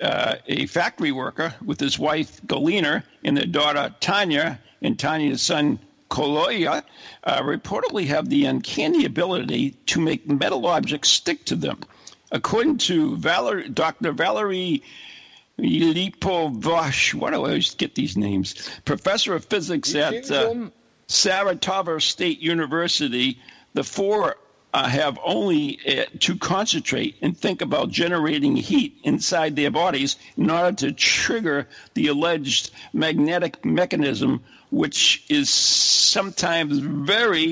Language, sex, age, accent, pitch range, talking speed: English, male, 60-79, American, 145-205 Hz, 125 wpm